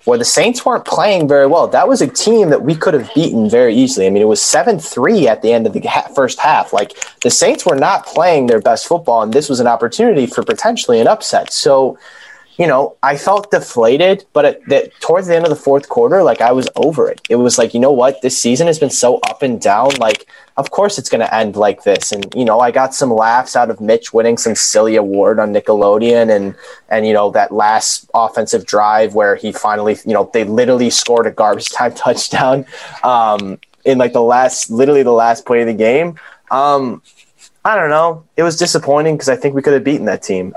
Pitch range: 110-150 Hz